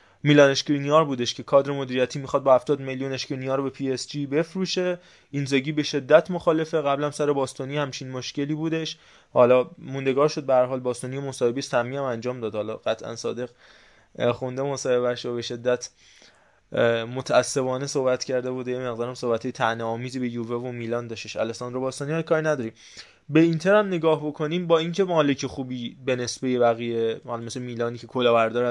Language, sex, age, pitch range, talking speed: Persian, male, 20-39, 125-150 Hz, 170 wpm